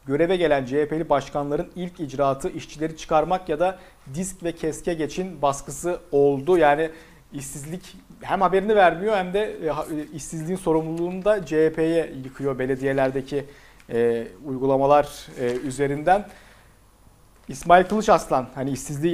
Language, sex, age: Turkish, male, 40-59